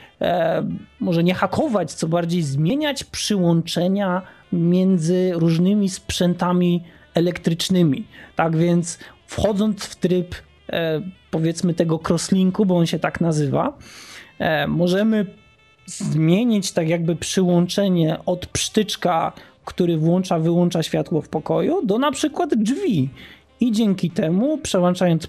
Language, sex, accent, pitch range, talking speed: Polish, male, native, 175-215 Hz, 105 wpm